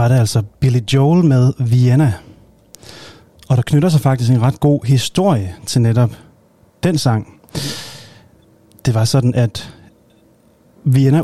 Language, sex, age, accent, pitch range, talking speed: Danish, male, 30-49, native, 110-140 Hz, 135 wpm